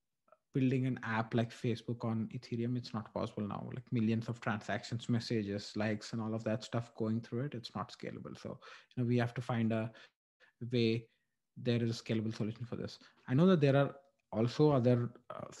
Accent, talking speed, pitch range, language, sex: Indian, 200 wpm, 110-130 Hz, English, male